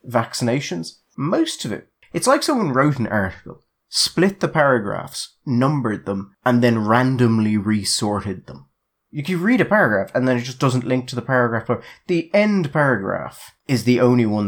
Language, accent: English, British